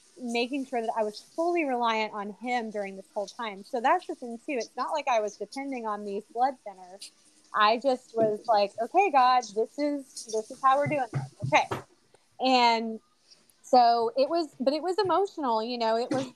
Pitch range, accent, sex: 220-285 Hz, American, female